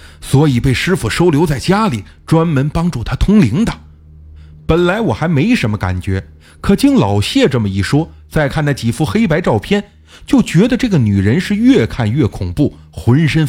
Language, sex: Chinese, male